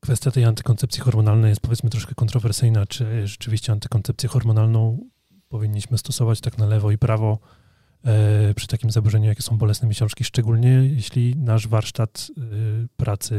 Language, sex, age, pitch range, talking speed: Polish, male, 30-49, 110-130 Hz, 140 wpm